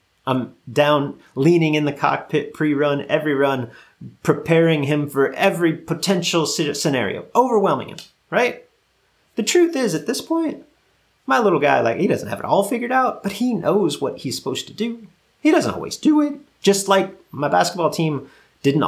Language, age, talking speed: English, 30-49, 170 wpm